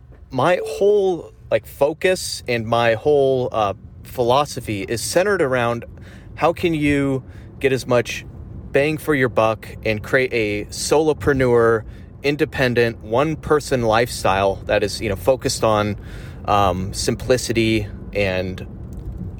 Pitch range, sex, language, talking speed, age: 105-130 Hz, male, English, 120 wpm, 30-49